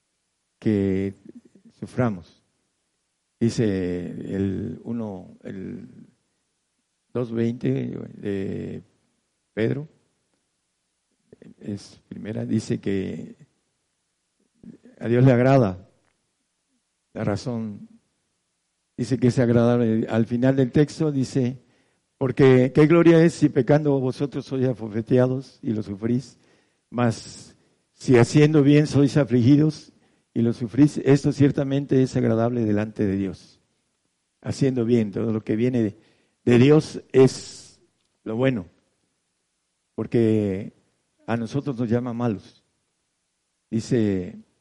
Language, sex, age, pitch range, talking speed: Spanish, male, 60-79, 110-135 Hz, 100 wpm